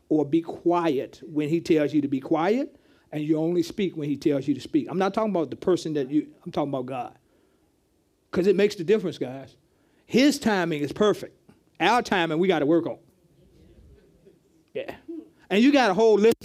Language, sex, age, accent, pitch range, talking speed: English, male, 40-59, American, 170-255 Hz, 205 wpm